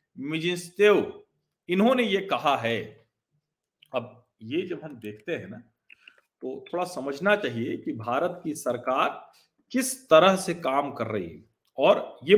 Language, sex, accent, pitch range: Hindi, male, native, 150-220 Hz